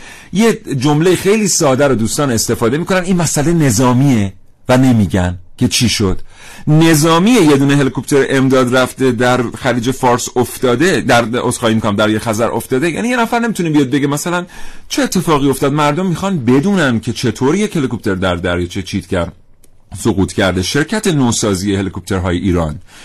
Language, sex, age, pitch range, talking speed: Persian, male, 40-59, 105-145 Hz, 160 wpm